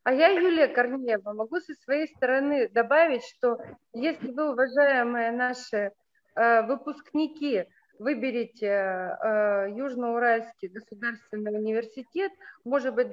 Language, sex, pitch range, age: Russian, female, 220-265 Hz, 30-49